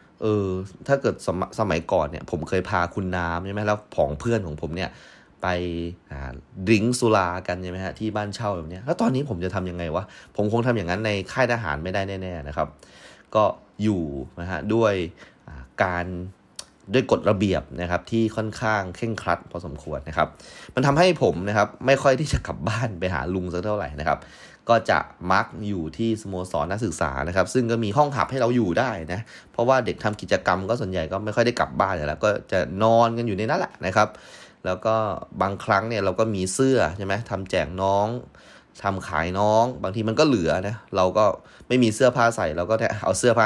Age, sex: 20-39, male